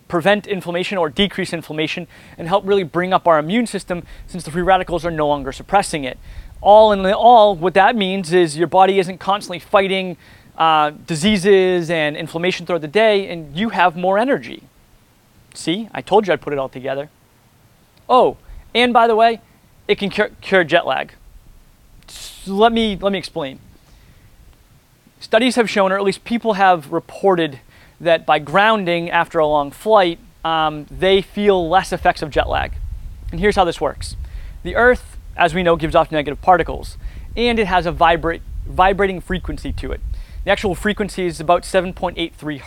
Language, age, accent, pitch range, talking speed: English, 30-49, American, 155-195 Hz, 175 wpm